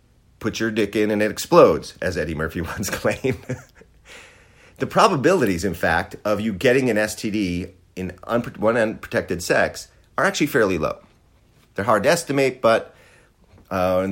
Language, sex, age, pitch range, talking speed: English, male, 40-59, 95-130 Hz, 155 wpm